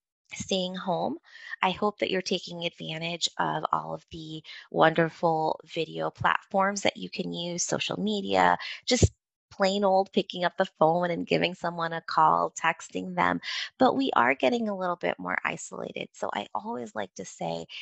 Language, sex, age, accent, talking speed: English, female, 20-39, American, 170 wpm